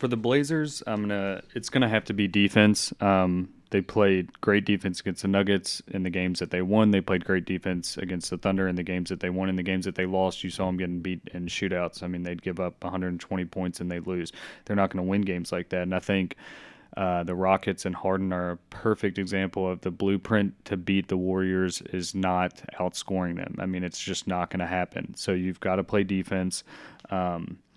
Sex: male